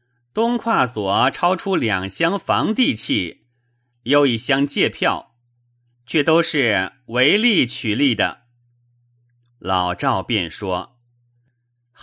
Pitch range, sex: 120-125 Hz, male